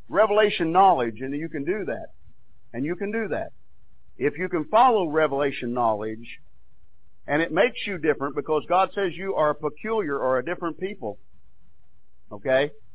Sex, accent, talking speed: male, American, 160 wpm